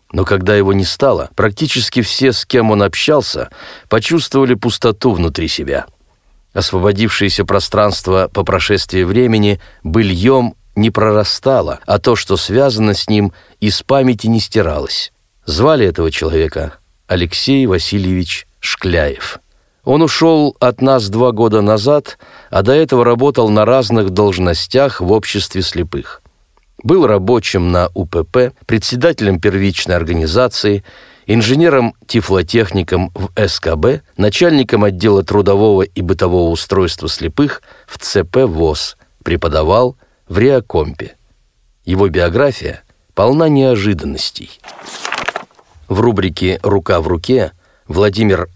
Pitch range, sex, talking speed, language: 95-120 Hz, male, 110 wpm, Russian